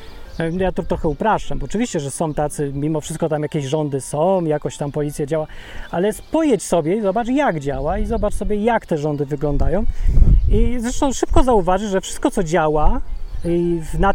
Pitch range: 155-205 Hz